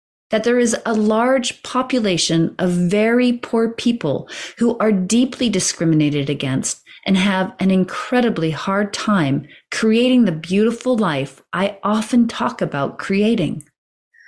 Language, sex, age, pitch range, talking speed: English, female, 40-59, 160-225 Hz, 125 wpm